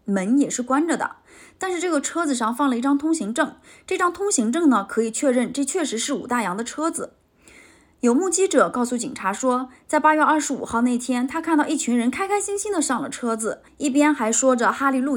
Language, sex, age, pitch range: Chinese, female, 20-39, 235-320 Hz